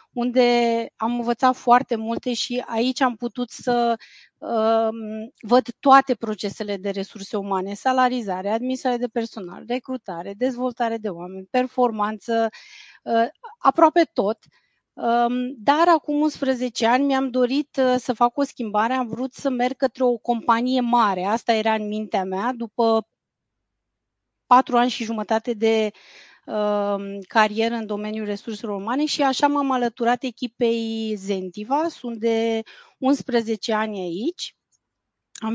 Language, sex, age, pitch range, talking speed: Romanian, female, 30-49, 220-255 Hz, 130 wpm